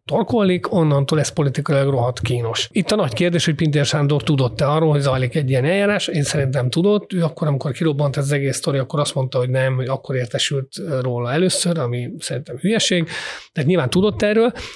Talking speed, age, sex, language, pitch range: 190 wpm, 30-49, male, Hungarian, 135-170 Hz